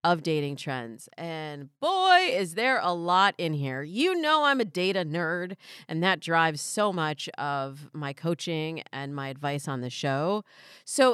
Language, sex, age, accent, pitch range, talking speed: English, female, 30-49, American, 155-215 Hz, 175 wpm